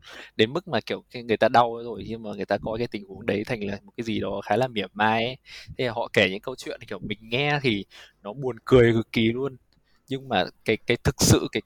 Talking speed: 270 wpm